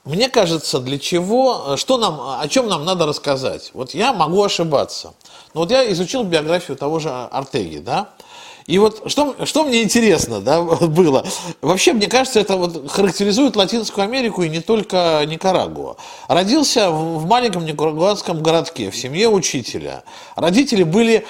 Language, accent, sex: Russian, native, male